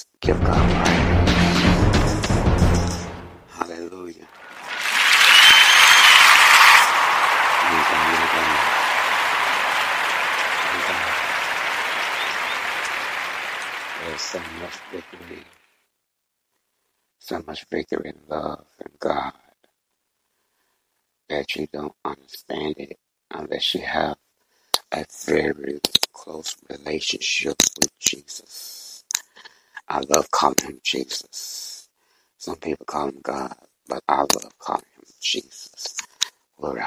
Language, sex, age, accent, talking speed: English, male, 60-79, American, 75 wpm